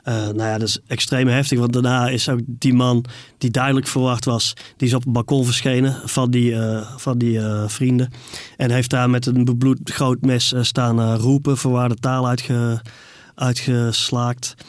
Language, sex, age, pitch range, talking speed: Dutch, male, 30-49, 120-135 Hz, 190 wpm